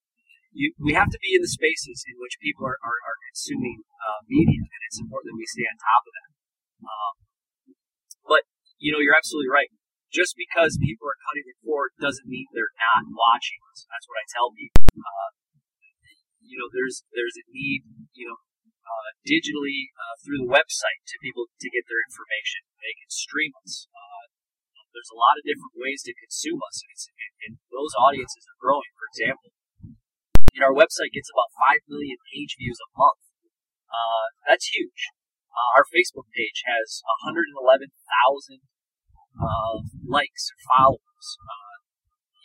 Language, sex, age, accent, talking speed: English, male, 30-49, American, 170 wpm